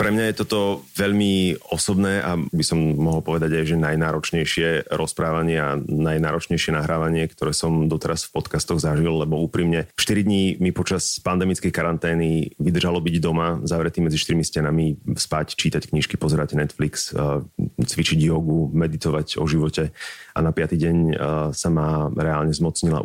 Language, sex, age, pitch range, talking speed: Slovak, male, 30-49, 80-85 Hz, 150 wpm